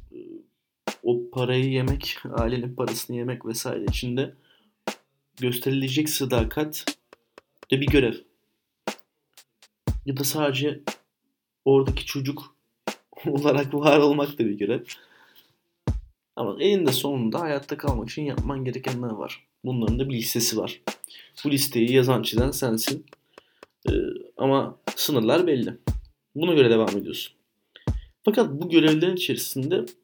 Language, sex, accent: Turkish, male, native